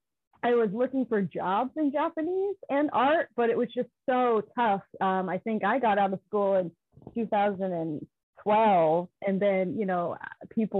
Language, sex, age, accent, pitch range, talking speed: English, female, 30-49, American, 195-265 Hz, 185 wpm